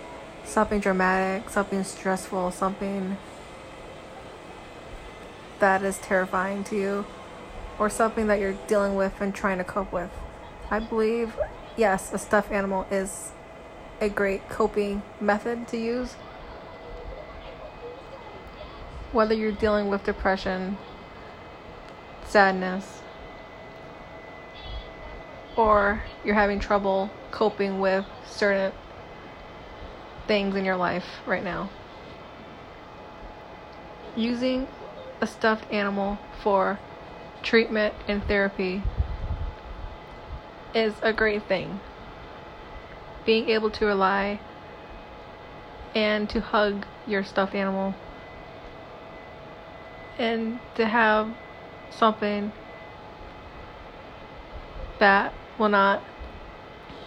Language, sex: English, female